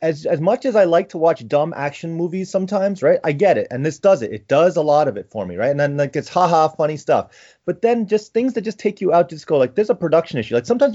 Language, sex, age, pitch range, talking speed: English, male, 30-49, 145-195 Hz, 295 wpm